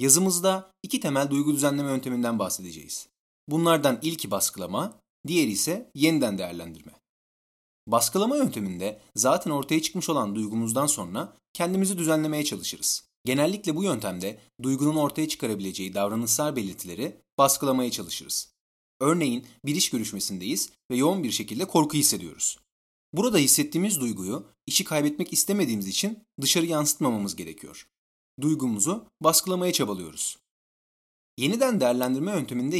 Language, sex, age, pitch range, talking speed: Turkish, male, 30-49, 105-160 Hz, 110 wpm